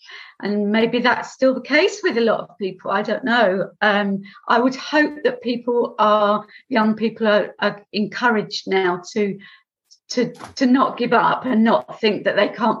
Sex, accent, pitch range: female, British, 210-245 Hz